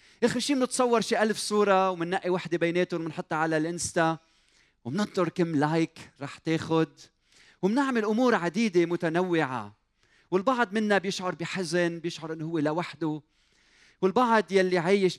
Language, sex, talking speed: Arabic, male, 125 wpm